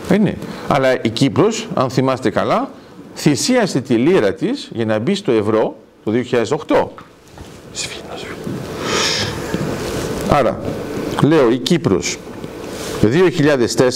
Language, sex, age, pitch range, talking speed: Greek, male, 50-69, 130-215 Hz, 95 wpm